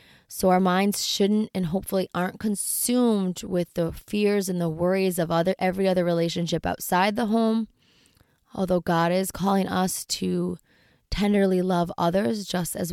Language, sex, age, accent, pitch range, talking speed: English, female, 20-39, American, 175-205 Hz, 155 wpm